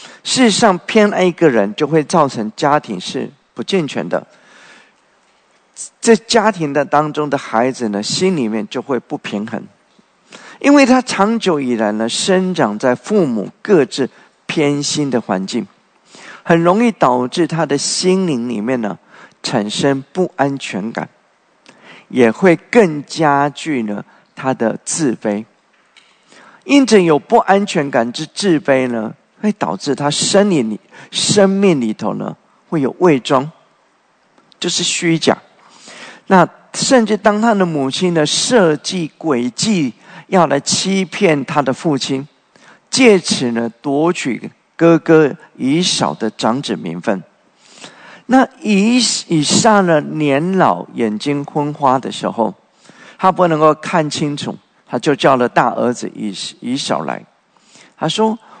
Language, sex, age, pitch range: English, male, 50-69, 135-195 Hz